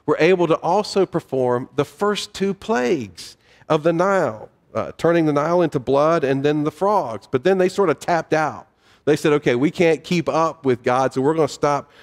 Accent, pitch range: American, 115-150 Hz